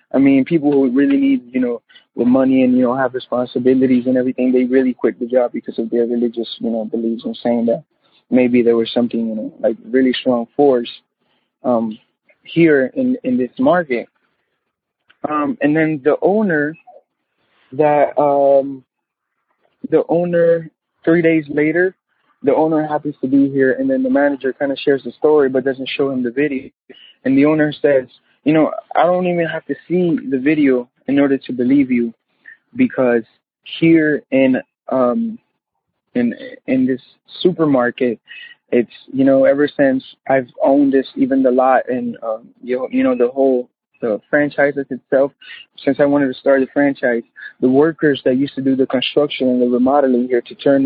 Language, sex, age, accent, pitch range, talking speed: English, male, 20-39, American, 125-155 Hz, 180 wpm